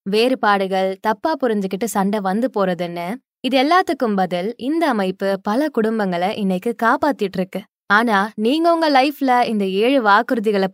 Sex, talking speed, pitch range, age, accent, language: female, 85 wpm, 195-255 Hz, 20-39, native, Tamil